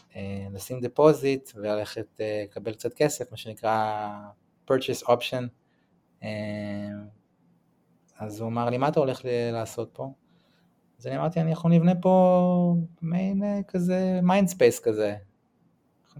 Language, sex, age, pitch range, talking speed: Hebrew, male, 20-39, 110-155 Hz, 125 wpm